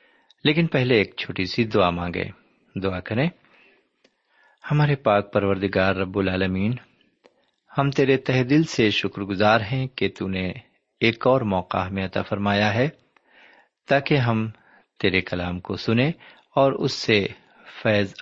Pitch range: 100-135 Hz